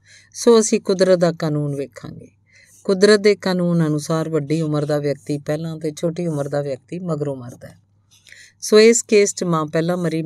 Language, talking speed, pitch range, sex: Punjabi, 170 wpm, 135-175 Hz, female